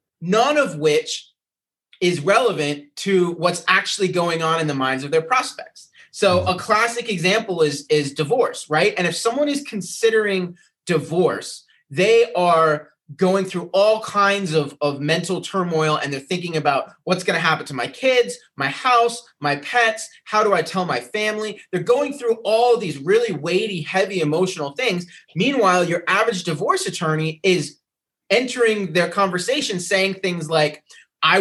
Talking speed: 160 wpm